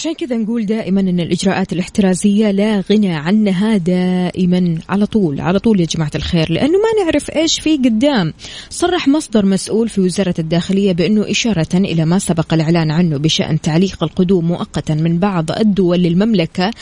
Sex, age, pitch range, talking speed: female, 20-39, 180-225 Hz, 160 wpm